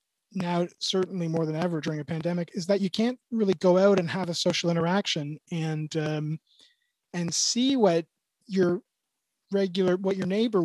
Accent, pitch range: American, 140-180 Hz